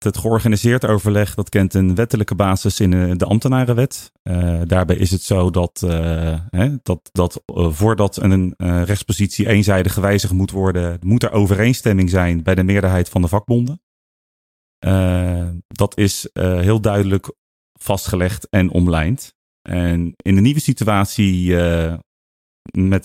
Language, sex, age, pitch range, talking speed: Dutch, male, 30-49, 90-110 Hz, 135 wpm